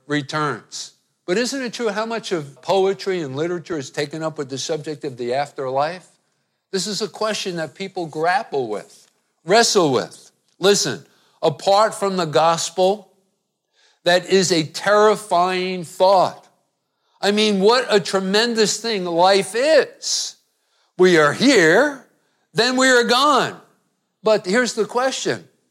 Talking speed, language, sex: 140 wpm, English, male